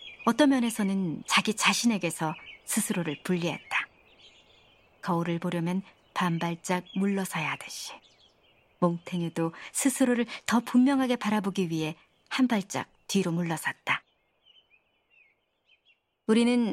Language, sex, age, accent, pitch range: Korean, male, 40-59, native, 175-240 Hz